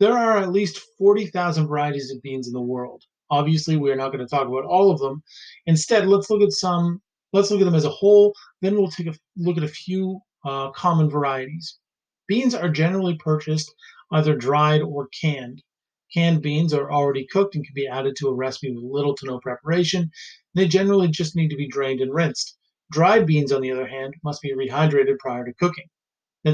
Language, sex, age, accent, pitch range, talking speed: English, male, 30-49, American, 140-175 Hz, 210 wpm